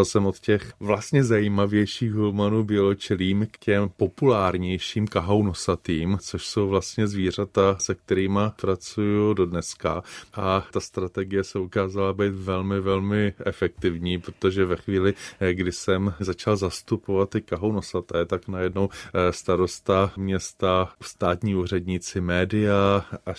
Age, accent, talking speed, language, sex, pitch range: 20-39, native, 120 wpm, Czech, male, 90-100 Hz